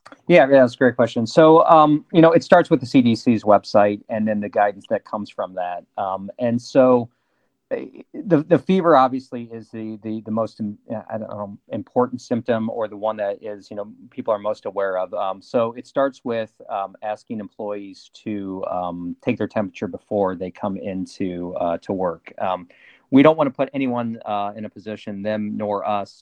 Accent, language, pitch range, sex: American, English, 100-125 Hz, male